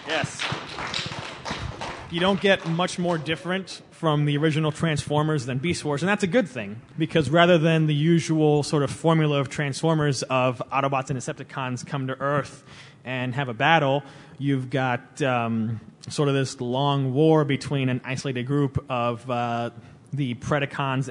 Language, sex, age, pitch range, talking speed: English, male, 30-49, 125-155 Hz, 160 wpm